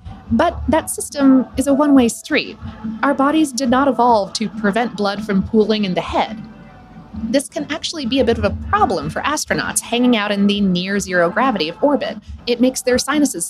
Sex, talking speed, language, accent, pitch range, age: female, 190 wpm, English, American, 200-270 Hz, 30-49